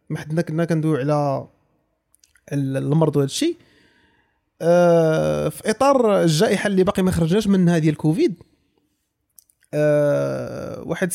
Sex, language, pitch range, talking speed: male, Arabic, 135-175 Hz, 110 wpm